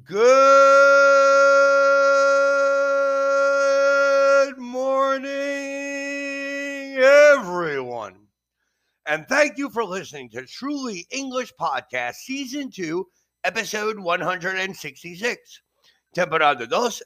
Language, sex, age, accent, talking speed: Spanish, male, 50-69, American, 65 wpm